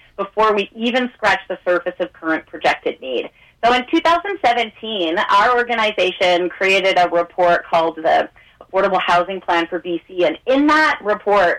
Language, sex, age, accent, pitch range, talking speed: English, female, 30-49, American, 170-230 Hz, 150 wpm